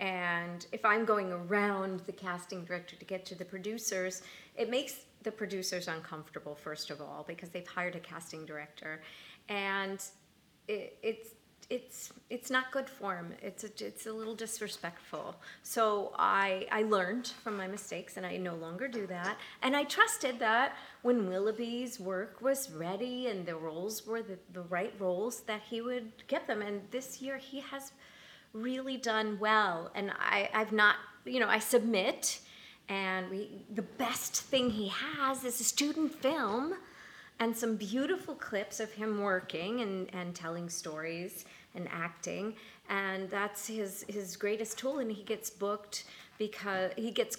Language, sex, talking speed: English, female, 165 wpm